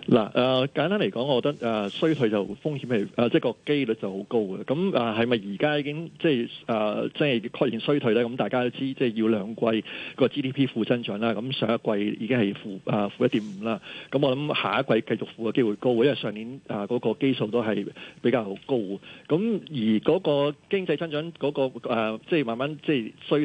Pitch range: 115-145 Hz